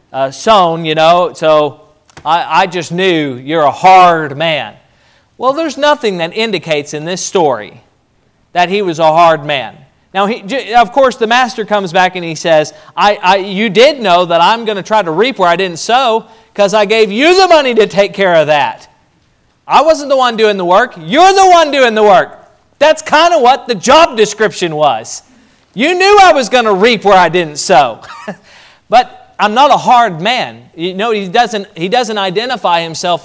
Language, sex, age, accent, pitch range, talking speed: English, male, 40-59, American, 160-230 Hz, 200 wpm